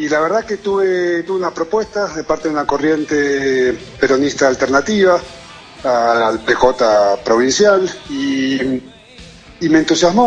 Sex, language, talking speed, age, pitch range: male, Spanish, 130 wpm, 40-59, 120-170 Hz